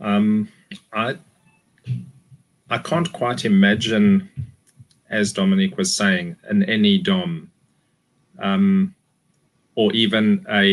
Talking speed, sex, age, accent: 95 wpm, male, 30-49, South African